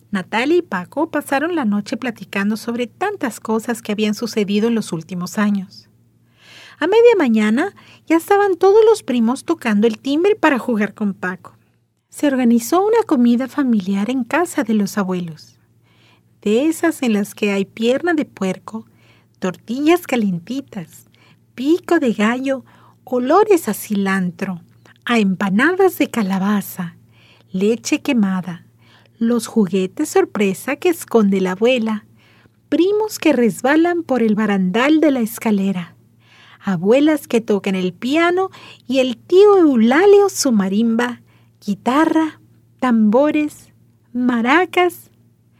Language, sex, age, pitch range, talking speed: Spanish, female, 50-69, 200-300 Hz, 125 wpm